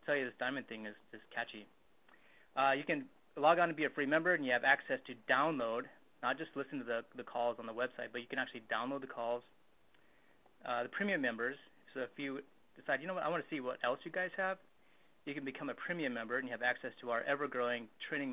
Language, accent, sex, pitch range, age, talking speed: English, American, male, 120-140 Hz, 20-39, 245 wpm